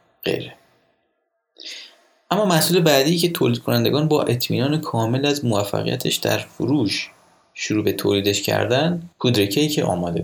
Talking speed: 125 wpm